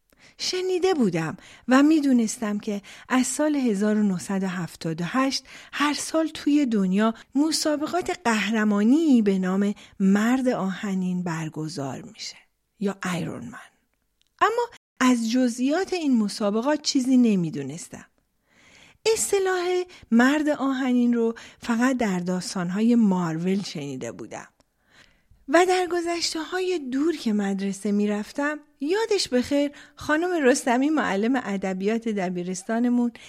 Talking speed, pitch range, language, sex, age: 100 wpm, 200-285 Hz, Persian, female, 40-59